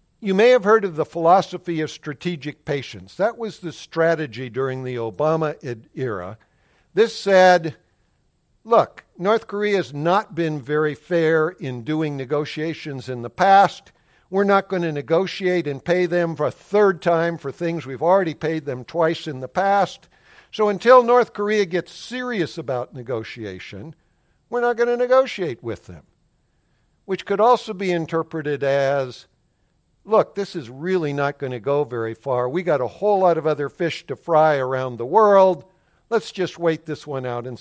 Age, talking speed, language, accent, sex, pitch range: 60-79, 170 wpm, English, American, male, 140-185 Hz